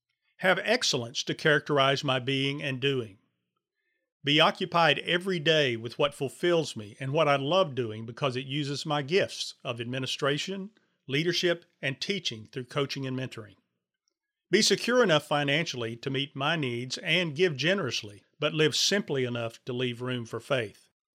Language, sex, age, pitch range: English, male, 40-59, 125-160 Hz